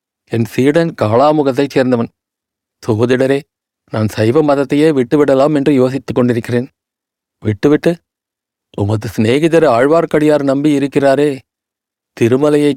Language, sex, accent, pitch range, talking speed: Tamil, male, native, 125-150 Hz, 90 wpm